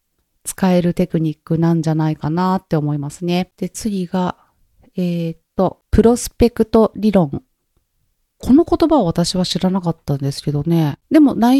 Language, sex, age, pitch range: Japanese, female, 40-59, 160-225 Hz